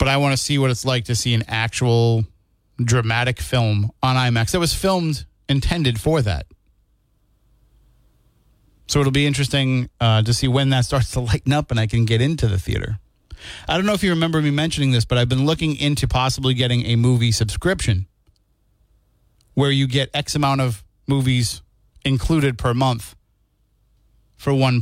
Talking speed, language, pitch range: 175 wpm, English, 105-140 Hz